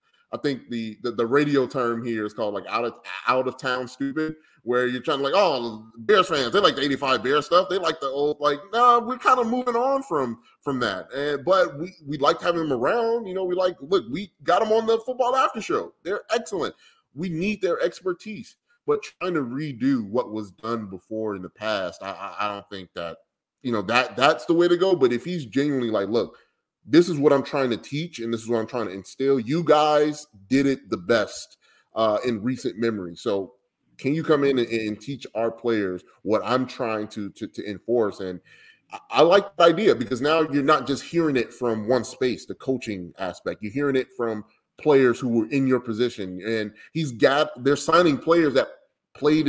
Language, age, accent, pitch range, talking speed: English, 20-39, American, 115-160 Hz, 220 wpm